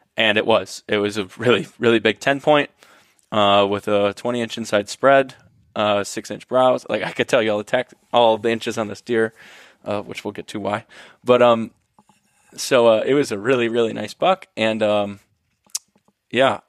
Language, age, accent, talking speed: English, 20-39, American, 200 wpm